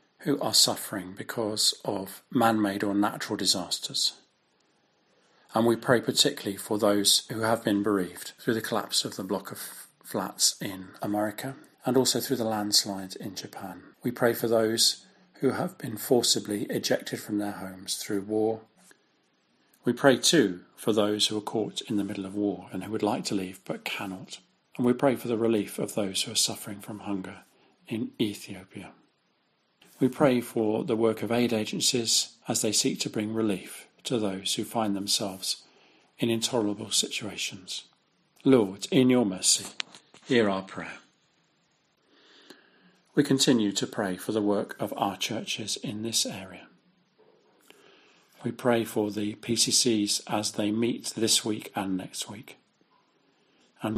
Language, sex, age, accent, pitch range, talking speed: English, male, 40-59, British, 100-120 Hz, 160 wpm